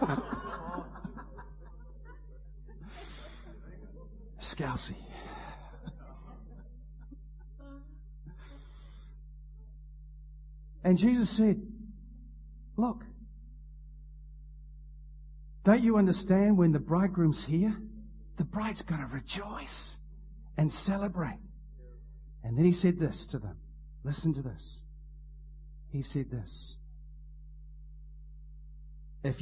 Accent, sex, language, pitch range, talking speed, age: American, male, English, 150-210 Hz, 65 wpm, 50-69